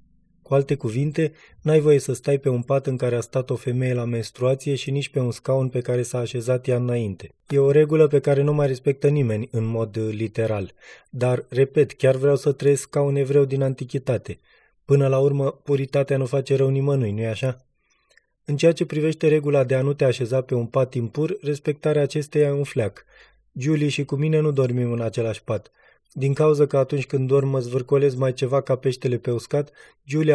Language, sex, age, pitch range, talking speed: Romanian, male, 20-39, 125-145 Hz, 205 wpm